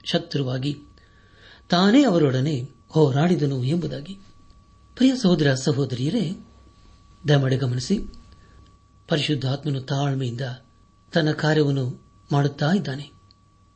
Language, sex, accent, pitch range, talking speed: Kannada, male, native, 105-160 Hz, 70 wpm